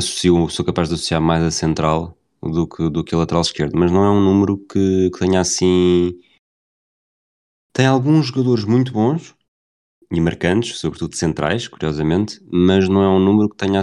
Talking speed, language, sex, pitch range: 170 wpm, Portuguese, male, 85-95 Hz